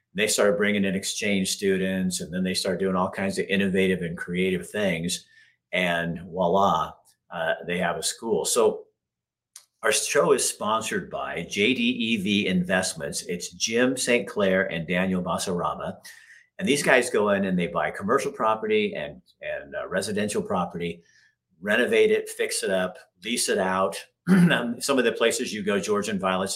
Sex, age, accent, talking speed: male, 50-69, American, 165 wpm